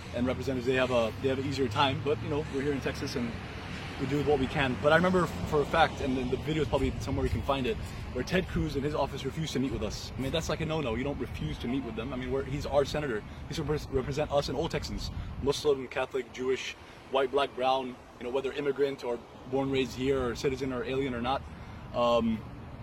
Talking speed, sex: 260 wpm, male